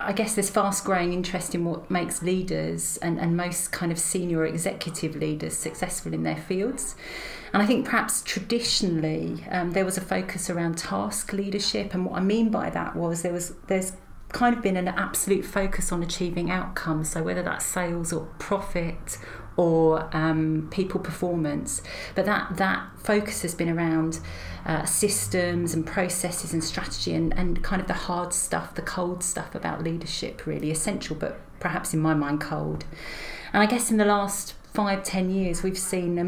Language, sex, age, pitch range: English, female, 40-59, 165-190 Hz